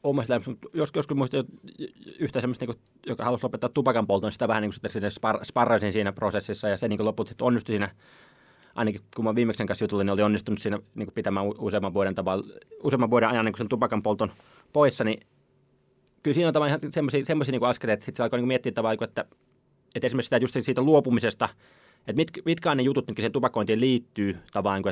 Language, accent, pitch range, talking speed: Finnish, native, 105-125 Hz, 200 wpm